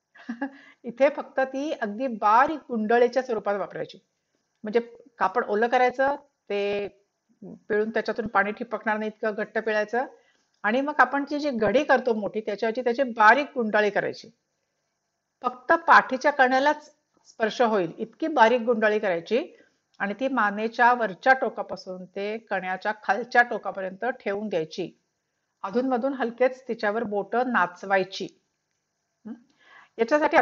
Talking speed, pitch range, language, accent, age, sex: 120 wpm, 205-260 Hz, Marathi, native, 50-69, female